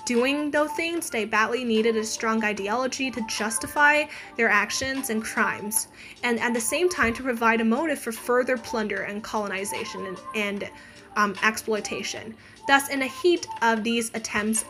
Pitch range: 215-260 Hz